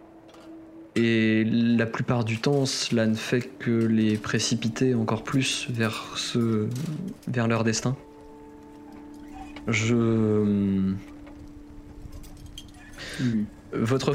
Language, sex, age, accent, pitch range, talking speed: French, male, 20-39, French, 105-130 Hz, 85 wpm